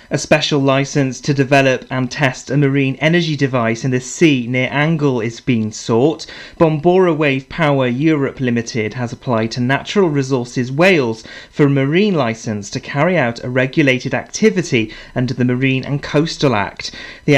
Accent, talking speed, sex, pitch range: British, 160 wpm, male, 125-155 Hz